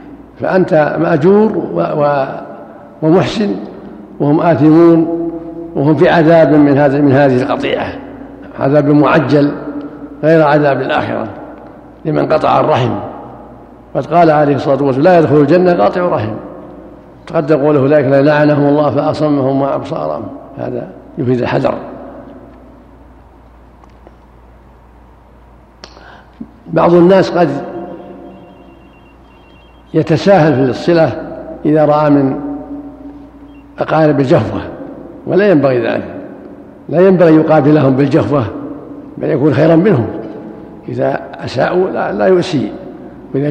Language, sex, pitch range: Arabic, male, 140-165 Hz